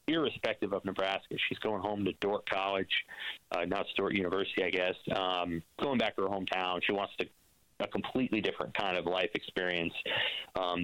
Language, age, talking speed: English, 30-49, 175 wpm